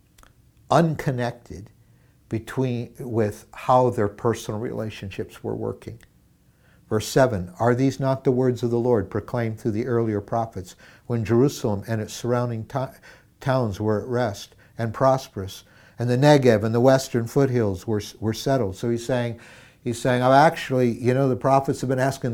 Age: 60-79